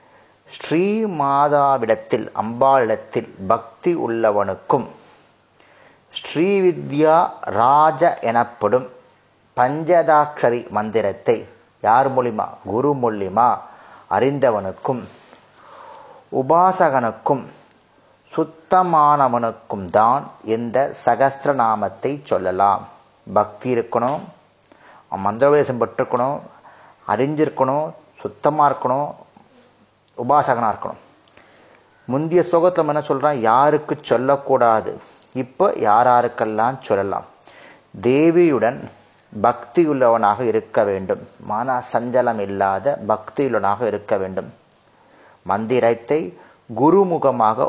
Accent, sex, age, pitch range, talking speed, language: native, male, 30-49, 115-155 Hz, 65 wpm, Tamil